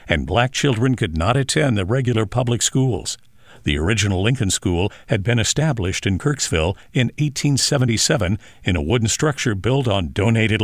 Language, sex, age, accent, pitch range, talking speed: English, male, 60-79, American, 105-140 Hz, 160 wpm